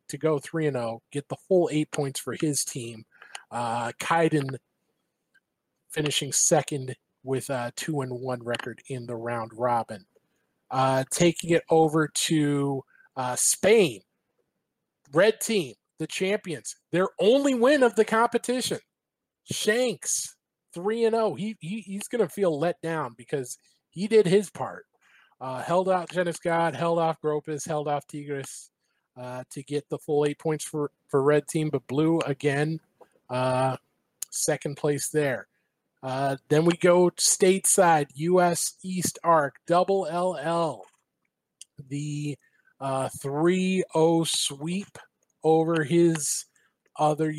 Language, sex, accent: English, male, American